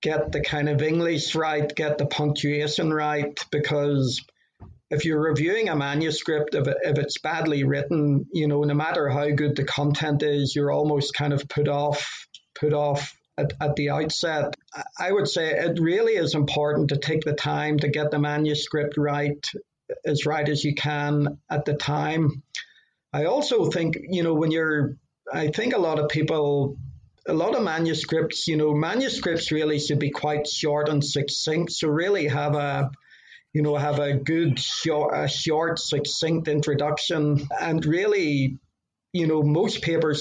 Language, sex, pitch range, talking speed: English, male, 145-155 Hz, 165 wpm